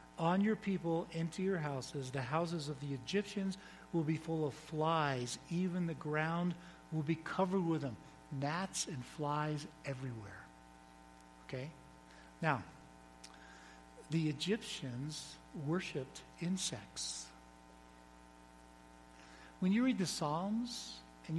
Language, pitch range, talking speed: English, 115-170 Hz, 110 wpm